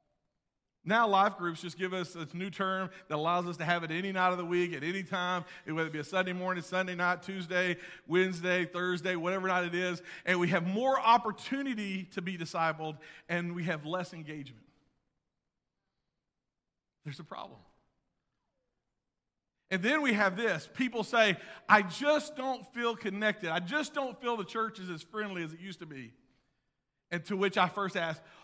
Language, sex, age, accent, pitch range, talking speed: English, male, 40-59, American, 180-240 Hz, 180 wpm